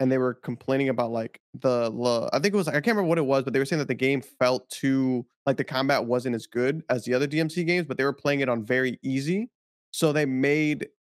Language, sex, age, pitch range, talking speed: English, male, 20-39, 125-160 Hz, 270 wpm